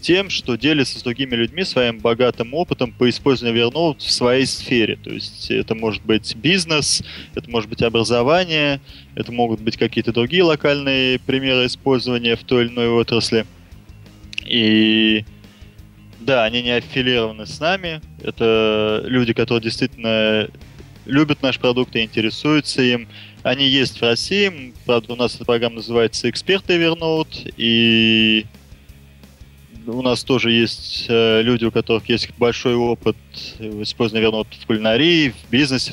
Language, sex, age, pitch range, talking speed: Russian, male, 20-39, 110-125 Hz, 140 wpm